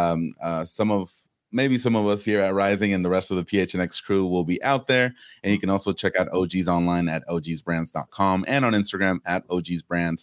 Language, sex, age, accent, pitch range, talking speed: English, male, 30-49, American, 85-105 Hz, 215 wpm